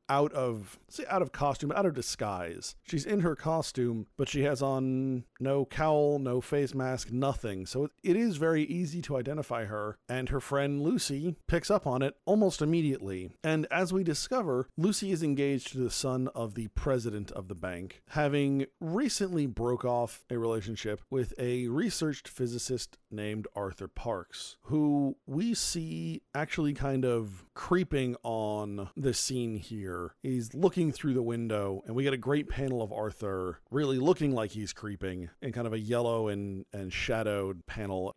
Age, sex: 40-59, male